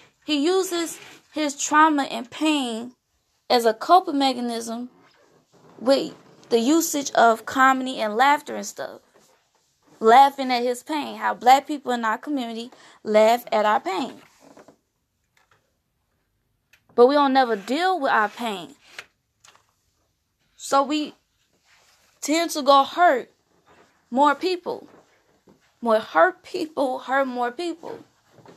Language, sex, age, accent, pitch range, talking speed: English, female, 20-39, American, 245-305 Hz, 115 wpm